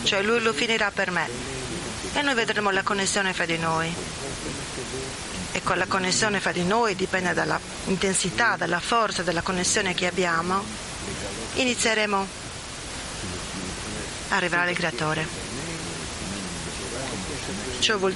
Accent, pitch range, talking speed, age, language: native, 165-200 Hz, 120 wpm, 30-49, Italian